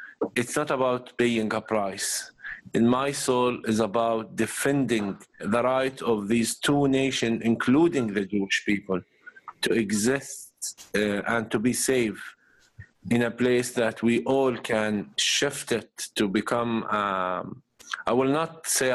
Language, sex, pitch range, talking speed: English, male, 110-135 Hz, 145 wpm